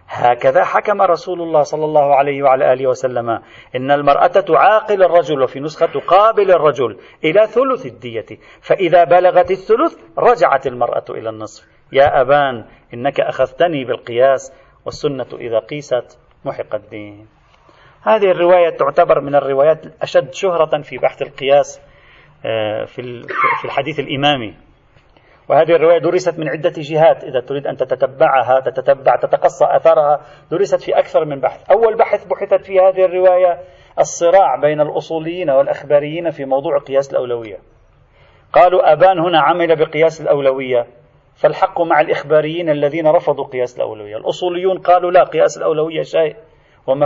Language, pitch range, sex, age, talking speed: Arabic, 135-175 Hz, male, 40-59, 130 wpm